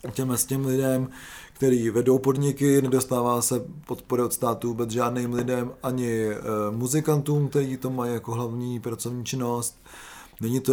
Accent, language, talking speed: native, Czech, 145 wpm